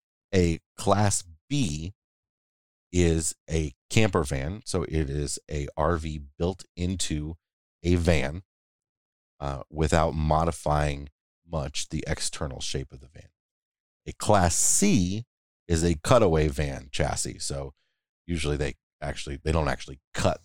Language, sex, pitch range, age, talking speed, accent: English, male, 75-90 Hz, 30-49, 125 wpm, American